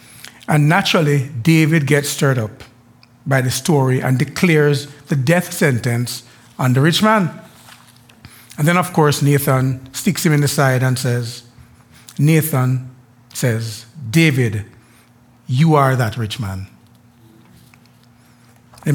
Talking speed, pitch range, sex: 125 wpm, 120-155 Hz, male